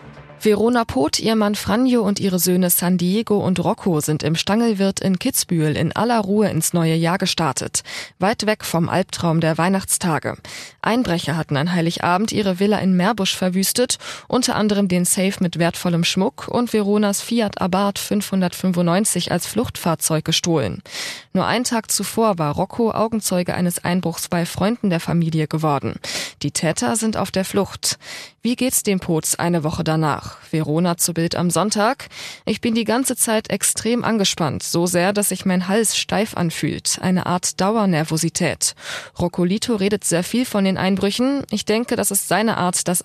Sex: female